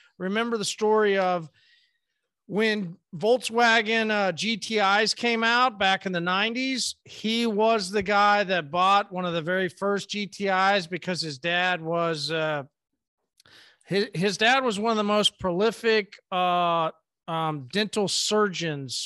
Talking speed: 140 wpm